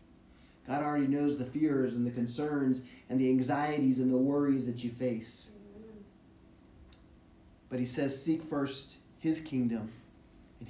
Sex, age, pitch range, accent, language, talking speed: male, 30-49, 130-190 Hz, American, English, 140 wpm